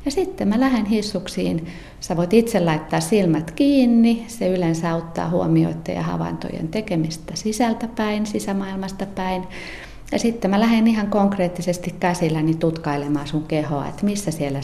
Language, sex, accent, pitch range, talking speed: Finnish, female, native, 150-190 Hz, 140 wpm